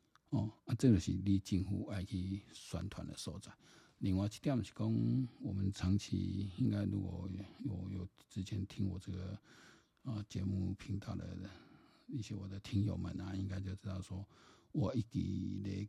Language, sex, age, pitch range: Chinese, male, 50-69, 95-105 Hz